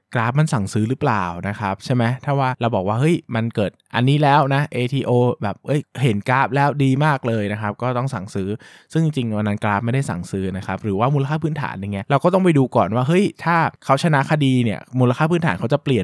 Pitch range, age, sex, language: 105-135 Hz, 20-39, male, Thai